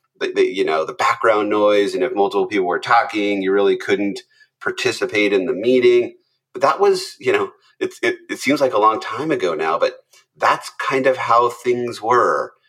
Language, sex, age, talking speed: English, male, 30-49, 185 wpm